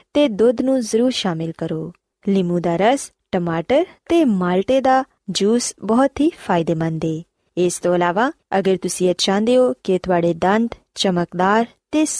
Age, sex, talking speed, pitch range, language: 20-39, female, 150 wpm, 180-260 Hz, Punjabi